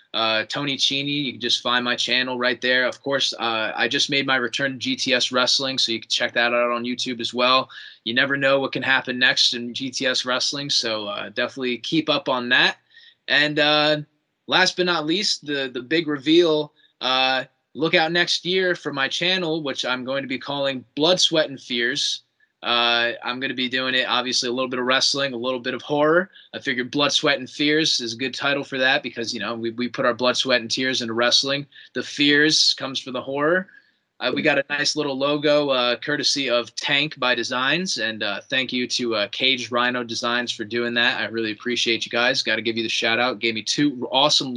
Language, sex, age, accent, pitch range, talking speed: English, male, 20-39, American, 120-145 Hz, 225 wpm